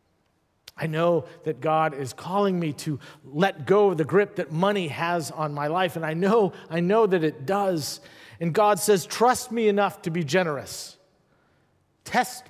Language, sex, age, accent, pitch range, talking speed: English, male, 50-69, American, 135-180 Hz, 180 wpm